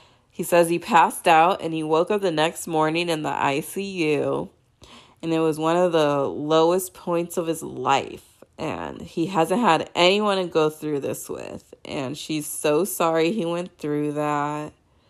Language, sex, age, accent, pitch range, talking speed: English, female, 20-39, American, 155-195 Hz, 175 wpm